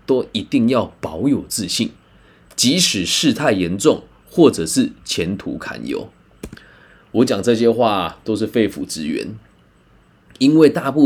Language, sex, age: Chinese, male, 20-39